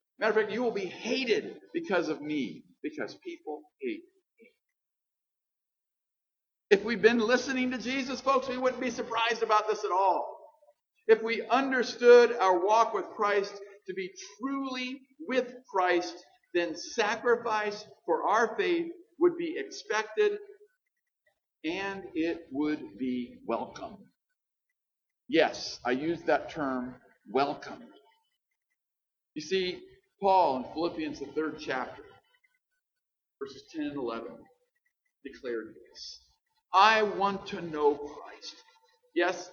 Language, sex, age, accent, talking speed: English, male, 50-69, American, 120 wpm